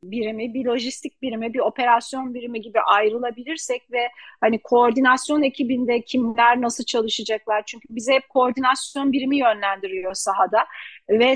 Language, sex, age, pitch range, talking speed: Turkish, female, 40-59, 210-250 Hz, 125 wpm